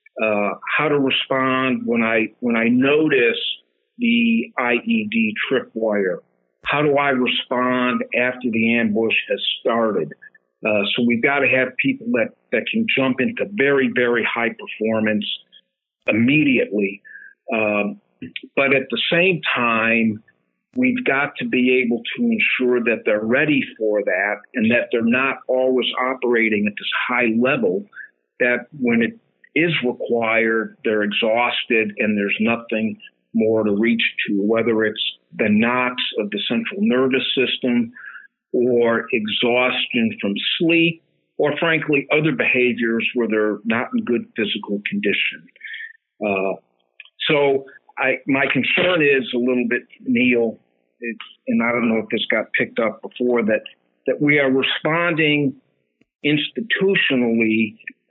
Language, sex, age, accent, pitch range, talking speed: English, male, 50-69, American, 110-145 Hz, 135 wpm